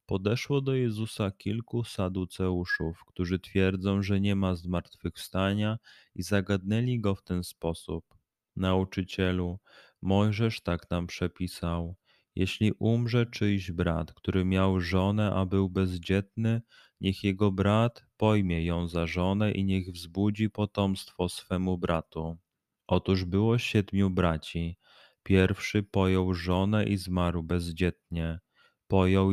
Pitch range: 90-100 Hz